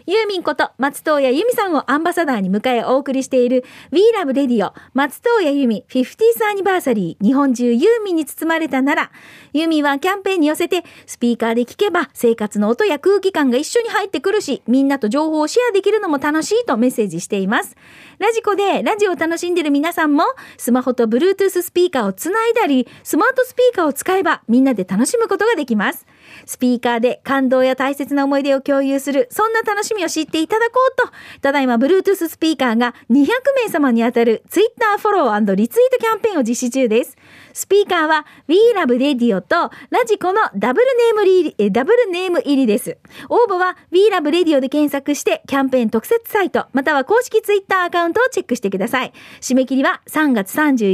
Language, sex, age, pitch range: Japanese, female, 40-59, 260-410 Hz